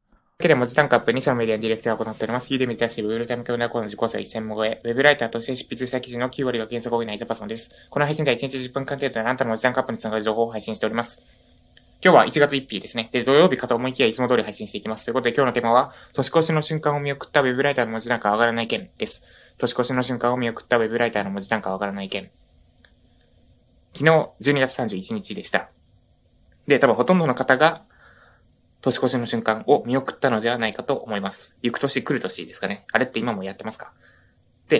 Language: Japanese